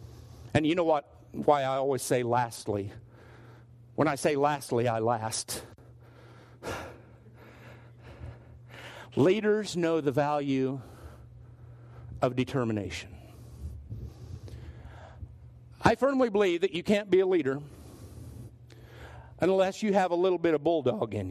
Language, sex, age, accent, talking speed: English, male, 50-69, American, 110 wpm